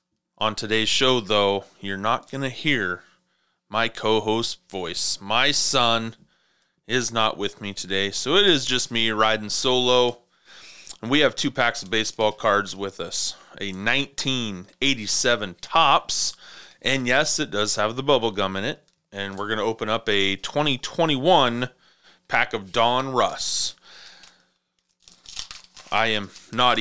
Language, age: English, 30-49